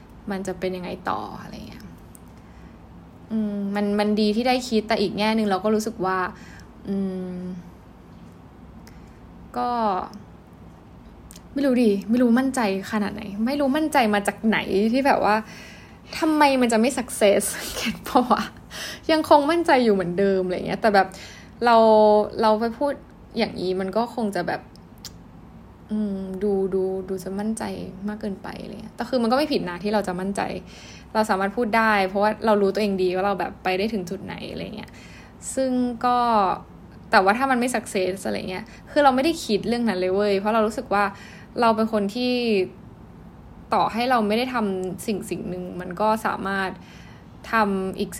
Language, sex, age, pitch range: Thai, female, 10-29, 190-230 Hz